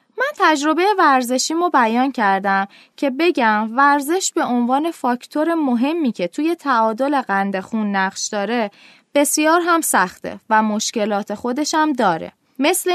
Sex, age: female, 20-39